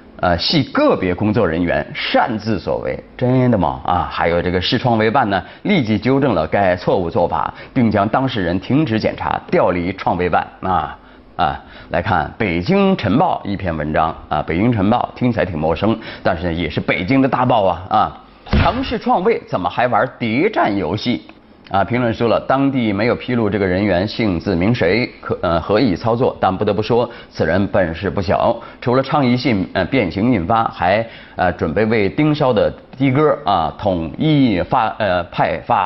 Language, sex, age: Chinese, male, 30-49